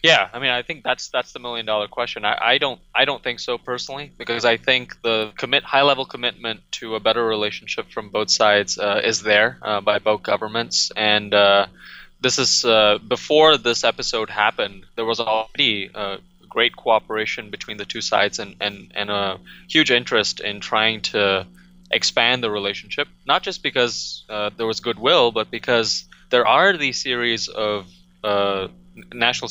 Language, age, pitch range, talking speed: English, 20-39, 105-120 Hz, 180 wpm